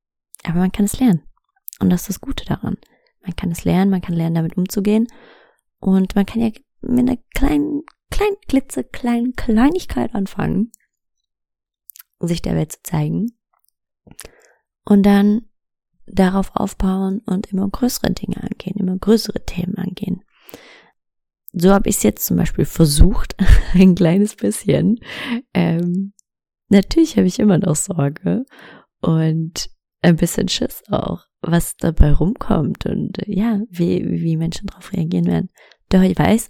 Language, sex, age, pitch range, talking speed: English, female, 20-39, 170-230 Hz, 145 wpm